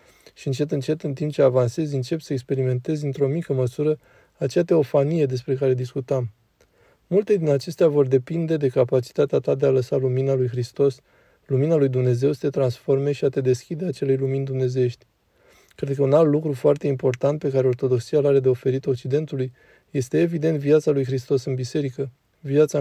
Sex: male